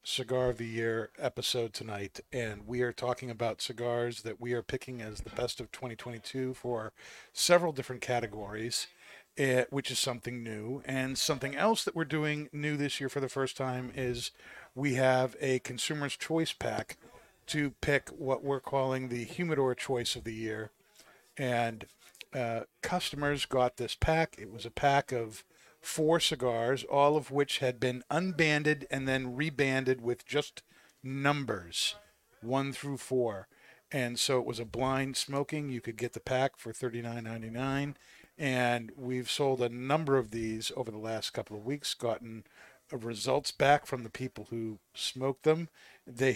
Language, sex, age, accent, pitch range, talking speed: English, male, 50-69, American, 120-140 Hz, 165 wpm